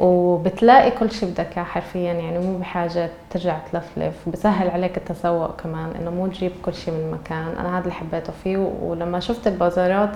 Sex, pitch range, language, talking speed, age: female, 170-200 Hz, Arabic, 170 wpm, 20-39